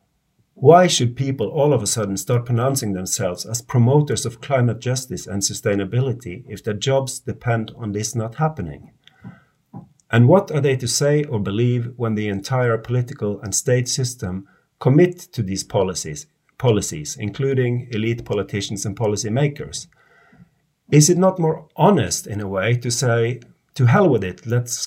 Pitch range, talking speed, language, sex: 110-145 Hz, 155 wpm, English, male